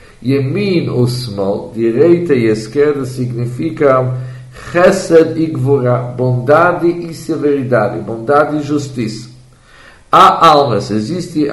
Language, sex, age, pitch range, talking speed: English, male, 50-69, 120-150 Hz, 95 wpm